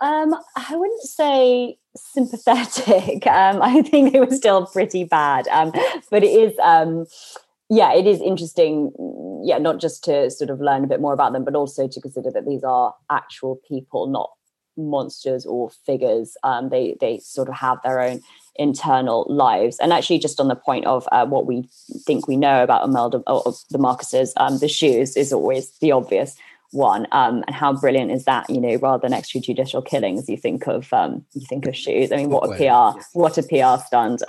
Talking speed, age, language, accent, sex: 195 wpm, 20-39, English, British, female